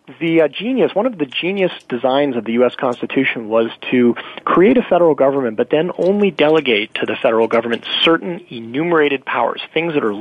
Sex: male